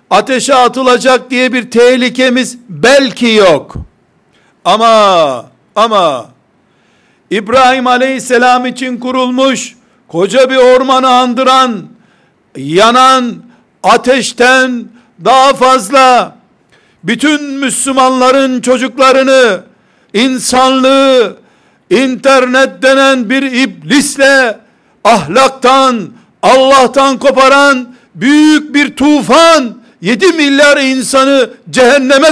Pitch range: 245-270 Hz